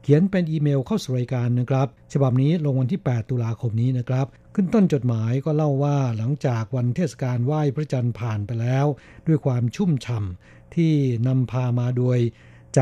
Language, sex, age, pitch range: Thai, male, 60-79, 125-155 Hz